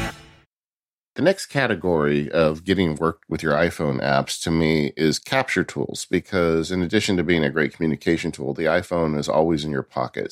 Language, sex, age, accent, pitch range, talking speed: English, male, 50-69, American, 70-85 Hz, 180 wpm